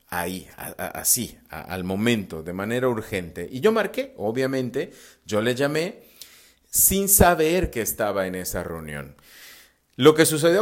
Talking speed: 135 wpm